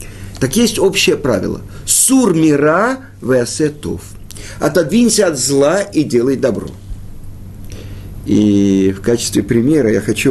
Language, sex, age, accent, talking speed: Russian, male, 50-69, native, 110 wpm